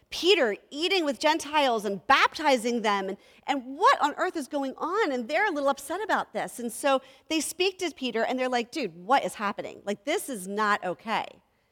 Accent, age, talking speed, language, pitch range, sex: American, 40-59, 205 wpm, English, 205-290 Hz, female